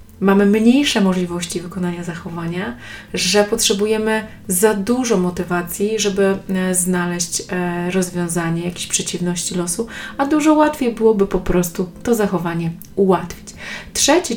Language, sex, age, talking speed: Polish, female, 30-49, 110 wpm